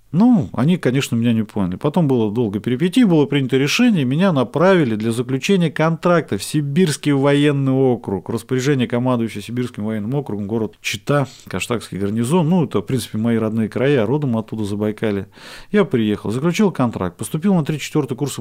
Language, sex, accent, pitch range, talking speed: Russian, male, native, 110-145 Hz, 160 wpm